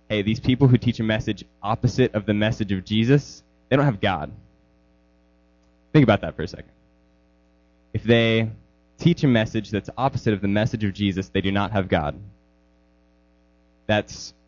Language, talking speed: English, 170 wpm